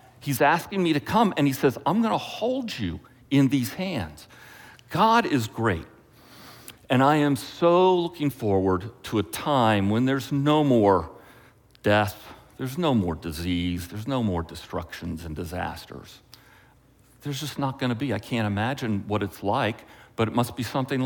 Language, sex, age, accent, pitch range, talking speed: English, male, 50-69, American, 100-130 Hz, 170 wpm